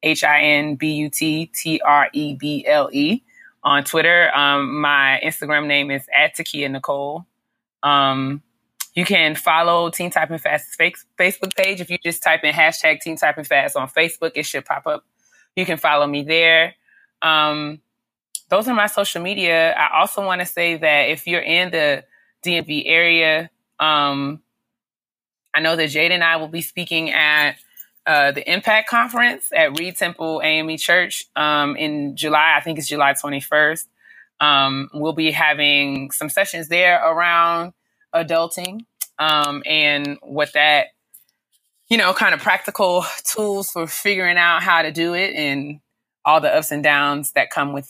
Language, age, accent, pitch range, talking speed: English, 20-39, American, 145-175 Hz, 150 wpm